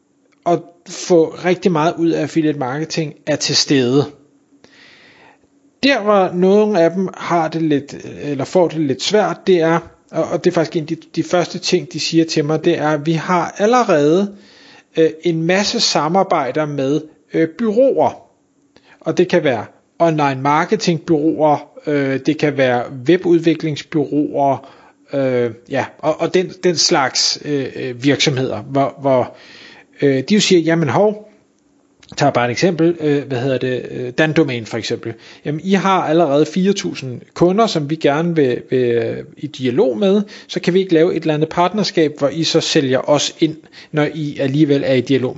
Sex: male